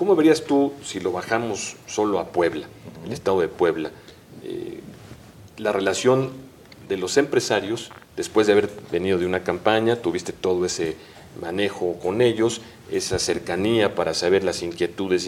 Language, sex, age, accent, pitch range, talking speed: Spanish, male, 40-59, Mexican, 95-140 Hz, 150 wpm